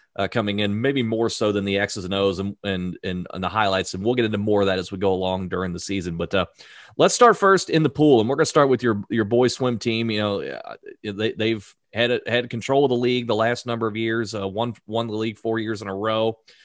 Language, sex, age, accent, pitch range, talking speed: English, male, 30-49, American, 105-125 Hz, 270 wpm